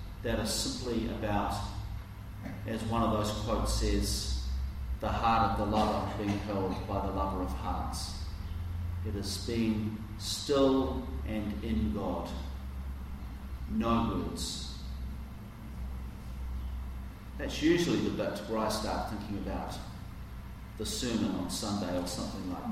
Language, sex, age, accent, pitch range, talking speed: English, male, 40-59, Australian, 85-115 Hz, 125 wpm